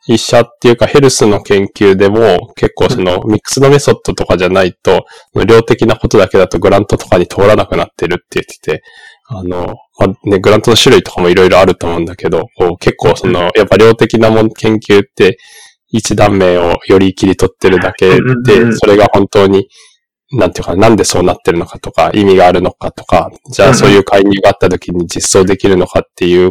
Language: Japanese